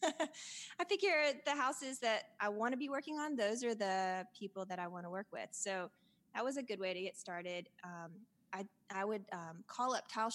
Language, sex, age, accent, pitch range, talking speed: English, female, 20-39, American, 180-225 Hz, 220 wpm